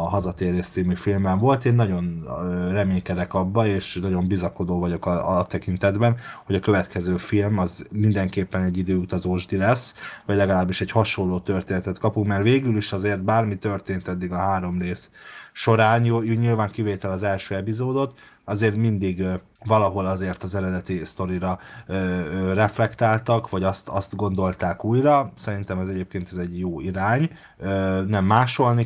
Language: Hungarian